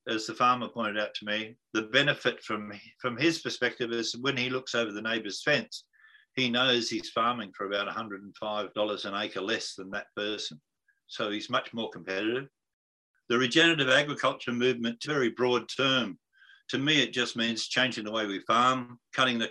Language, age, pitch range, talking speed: English, 50-69, 110-140 Hz, 180 wpm